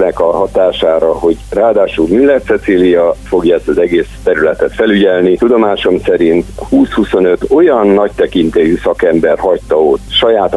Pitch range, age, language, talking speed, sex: 90-125 Hz, 50-69, Hungarian, 125 wpm, male